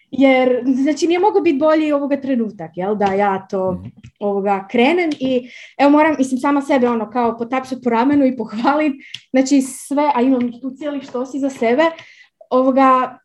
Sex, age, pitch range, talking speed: female, 20-39, 225-300 Hz, 170 wpm